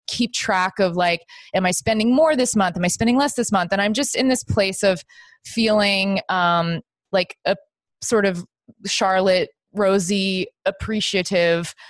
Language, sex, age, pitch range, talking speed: English, female, 20-39, 175-220 Hz, 160 wpm